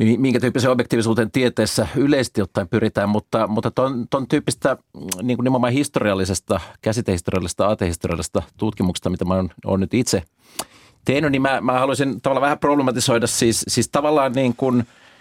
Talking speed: 140 wpm